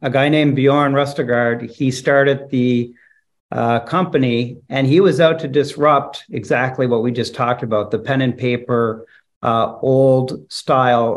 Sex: male